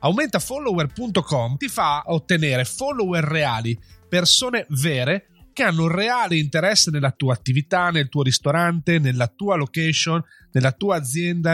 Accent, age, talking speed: native, 30-49, 130 wpm